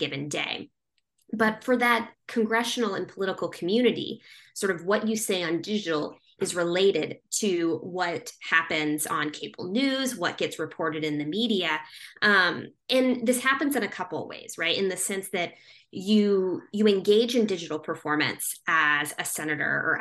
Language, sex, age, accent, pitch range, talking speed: English, female, 20-39, American, 165-225 Hz, 160 wpm